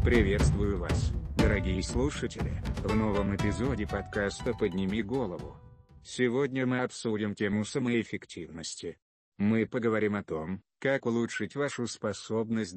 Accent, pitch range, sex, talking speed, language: native, 100-120 Hz, male, 110 wpm, Russian